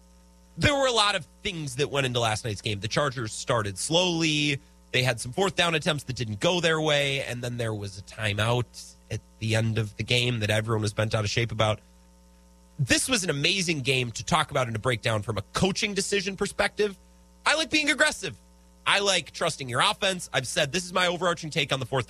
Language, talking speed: English, 225 wpm